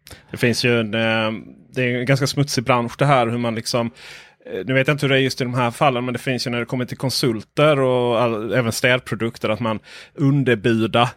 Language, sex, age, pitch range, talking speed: Swedish, male, 30-49, 120-140 Hz, 225 wpm